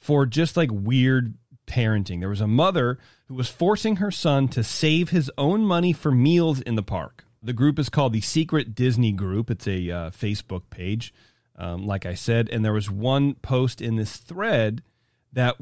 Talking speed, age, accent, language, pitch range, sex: 190 wpm, 30-49, American, English, 110-150 Hz, male